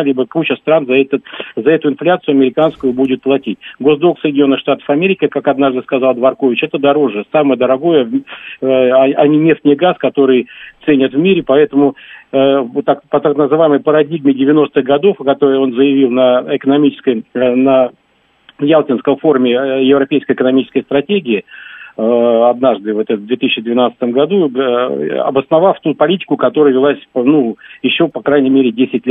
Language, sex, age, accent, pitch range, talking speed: Russian, male, 50-69, native, 130-160 Hz, 140 wpm